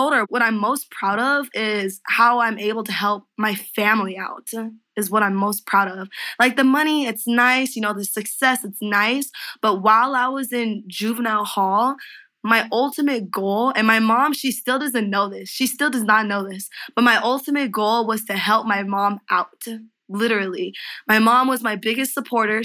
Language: English